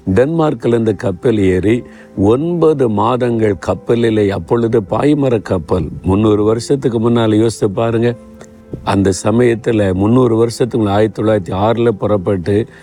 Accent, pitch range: native, 100-120 Hz